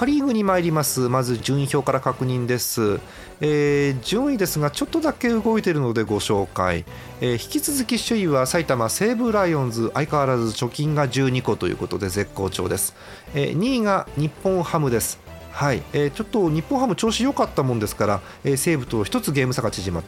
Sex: male